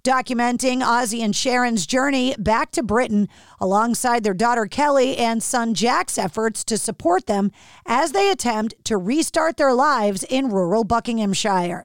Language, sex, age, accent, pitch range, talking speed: English, female, 40-59, American, 225-300 Hz, 145 wpm